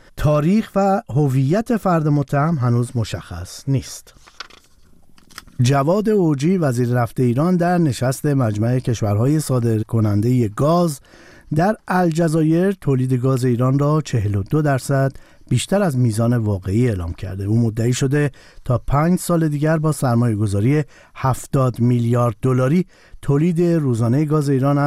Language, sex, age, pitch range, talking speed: Persian, male, 50-69, 120-155 Hz, 120 wpm